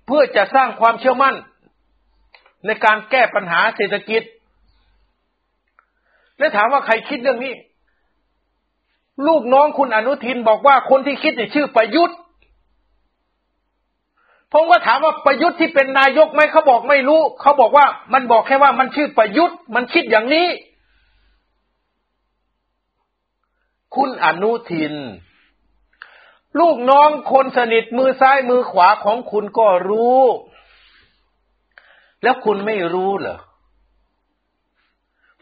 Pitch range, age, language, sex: 215-285 Hz, 60-79, Thai, male